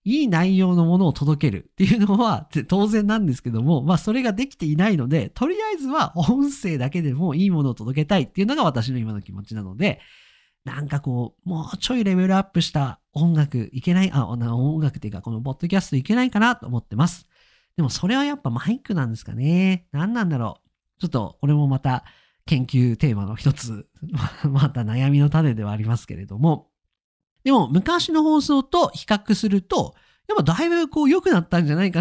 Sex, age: male, 40-59